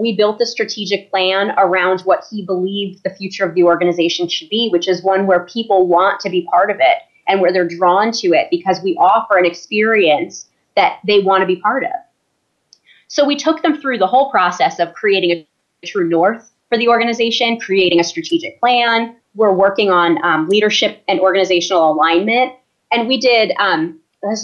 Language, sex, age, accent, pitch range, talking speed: English, female, 20-39, American, 175-225 Hz, 190 wpm